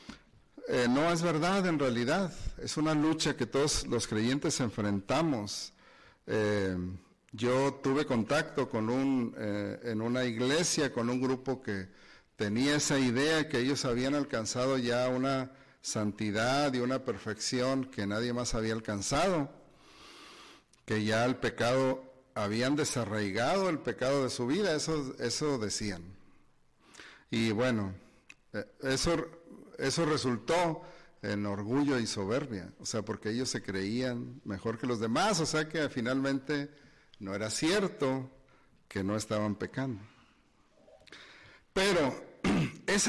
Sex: male